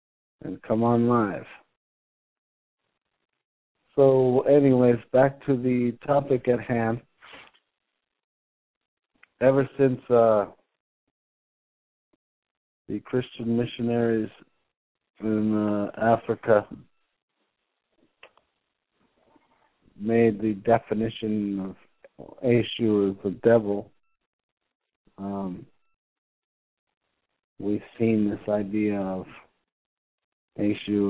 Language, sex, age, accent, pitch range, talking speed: English, male, 50-69, American, 100-120 Hz, 75 wpm